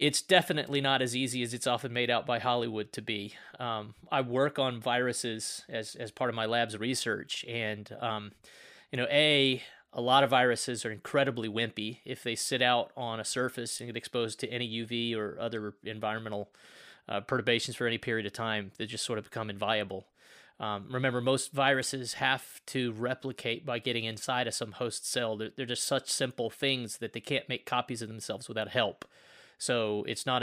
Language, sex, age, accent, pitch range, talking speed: English, male, 30-49, American, 110-130 Hz, 195 wpm